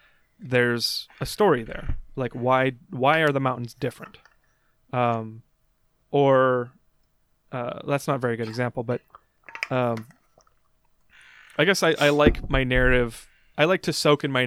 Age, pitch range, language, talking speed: 20-39, 125-150 Hz, English, 145 wpm